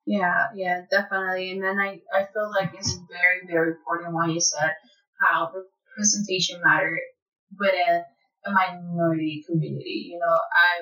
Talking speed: 145 wpm